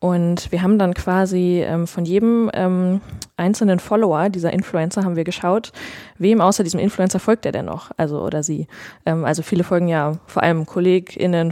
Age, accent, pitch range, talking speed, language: 20-39, German, 160-190 Hz, 180 wpm, German